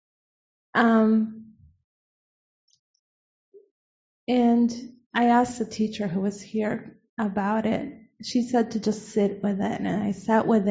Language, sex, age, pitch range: English, female, 30-49, 205-250 Hz